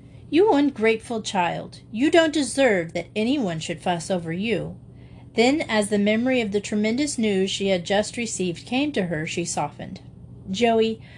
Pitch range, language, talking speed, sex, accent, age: 180-255 Hz, English, 160 wpm, female, American, 40-59